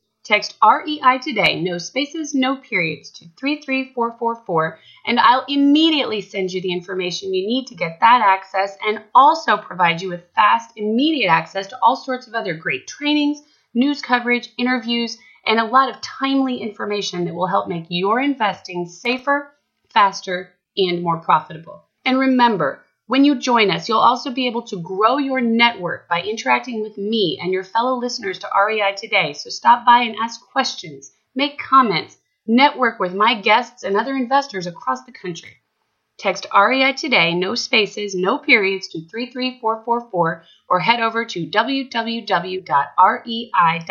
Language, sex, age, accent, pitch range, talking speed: English, female, 30-49, American, 185-255 Hz, 150 wpm